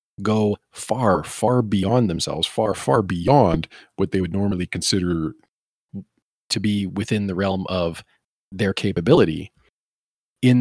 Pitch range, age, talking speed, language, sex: 95-115 Hz, 40-59, 125 wpm, English, male